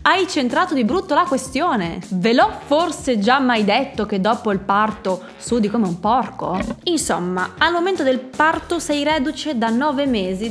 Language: Italian